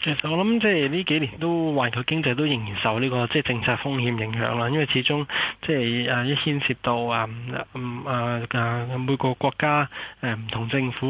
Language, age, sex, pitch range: Chinese, 20-39, male, 120-145 Hz